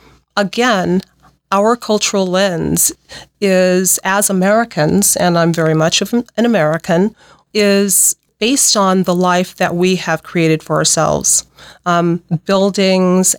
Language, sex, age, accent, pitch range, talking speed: English, female, 40-59, American, 165-195 Hz, 120 wpm